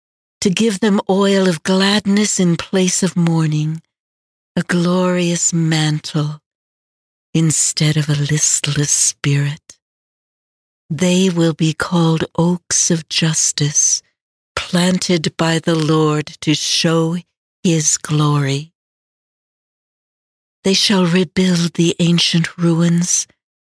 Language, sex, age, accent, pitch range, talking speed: English, female, 60-79, American, 155-180 Hz, 100 wpm